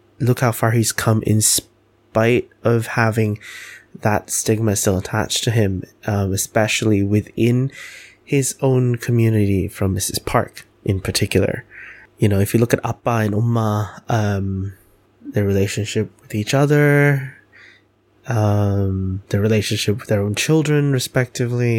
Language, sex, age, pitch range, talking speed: English, male, 20-39, 105-130 Hz, 135 wpm